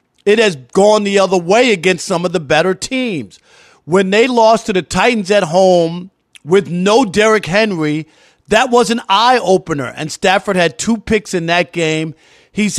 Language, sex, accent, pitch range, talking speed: English, male, American, 175-205 Hz, 175 wpm